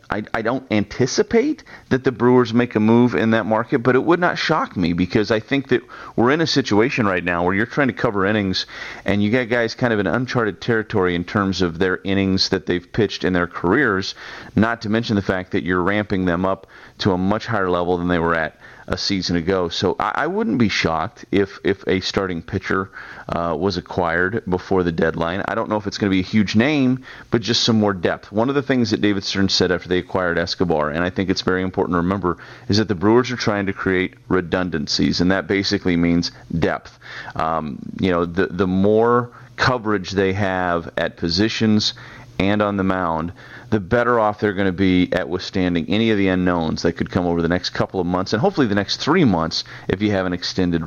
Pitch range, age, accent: 90-115 Hz, 30-49, American